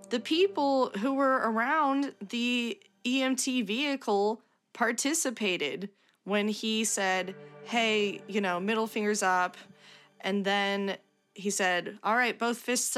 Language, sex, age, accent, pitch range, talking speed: English, female, 20-39, American, 195-235 Hz, 120 wpm